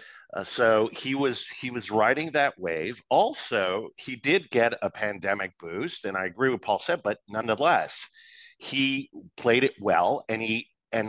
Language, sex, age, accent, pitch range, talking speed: English, male, 50-69, American, 115-140 Hz, 170 wpm